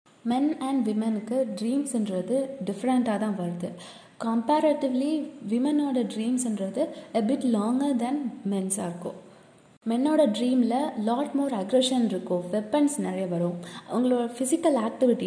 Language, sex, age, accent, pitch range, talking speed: Tamil, female, 20-39, native, 205-260 Hz, 105 wpm